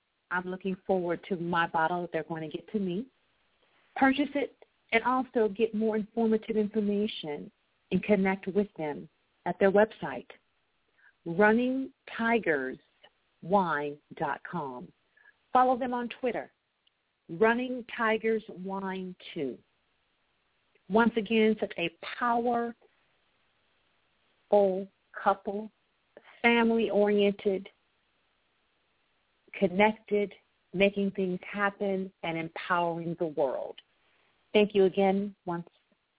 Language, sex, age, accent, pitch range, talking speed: English, female, 50-69, American, 180-225 Hz, 90 wpm